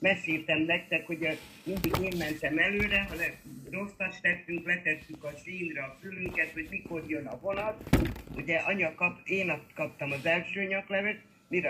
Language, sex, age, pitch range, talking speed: Hungarian, male, 50-69, 155-185 Hz, 155 wpm